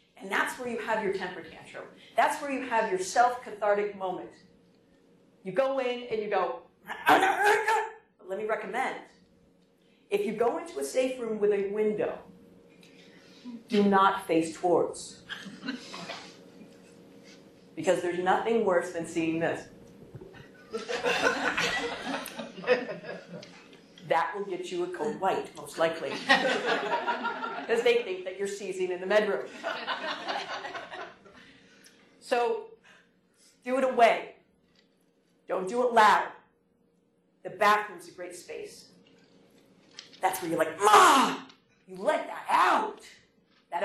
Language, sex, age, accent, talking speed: English, female, 50-69, American, 120 wpm